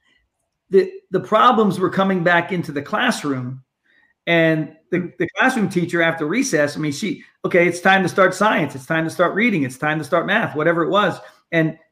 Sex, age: male, 40-59